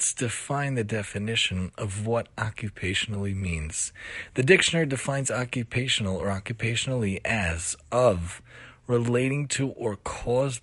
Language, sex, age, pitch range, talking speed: English, male, 30-49, 100-125 Hz, 115 wpm